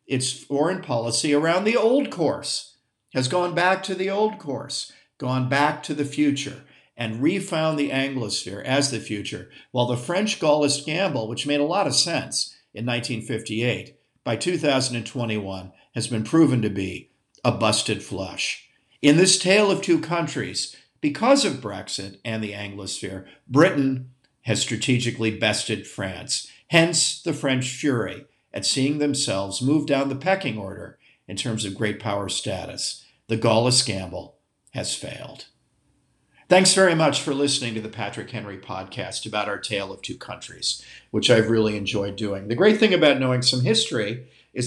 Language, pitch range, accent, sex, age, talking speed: English, 110-145 Hz, American, male, 50-69, 160 wpm